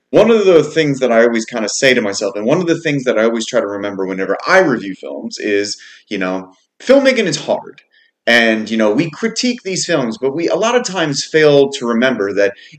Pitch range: 110-155 Hz